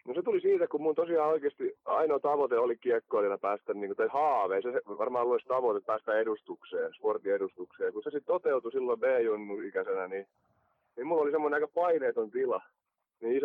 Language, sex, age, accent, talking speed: Finnish, male, 30-49, native, 180 wpm